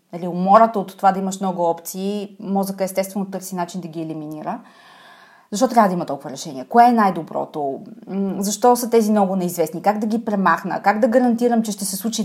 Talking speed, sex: 195 wpm, female